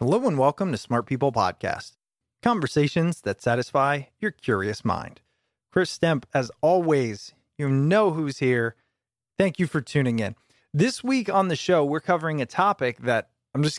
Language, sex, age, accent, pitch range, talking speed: English, male, 30-49, American, 130-180 Hz, 165 wpm